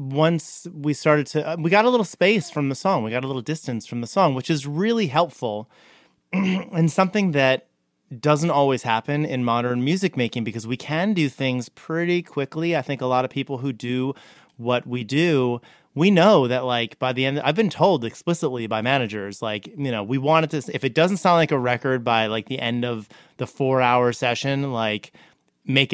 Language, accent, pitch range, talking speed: English, American, 120-160 Hz, 205 wpm